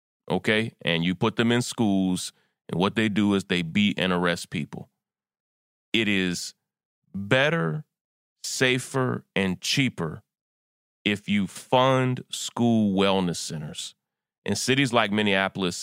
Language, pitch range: English, 85-115 Hz